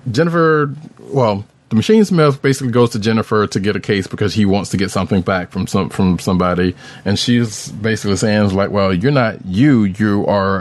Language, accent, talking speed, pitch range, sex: English, American, 200 wpm, 100-125 Hz, male